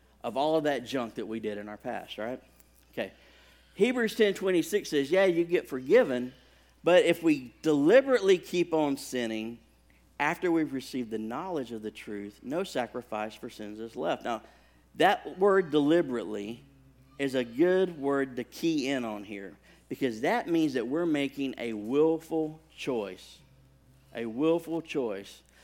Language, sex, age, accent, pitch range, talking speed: English, male, 50-69, American, 110-150 Hz, 155 wpm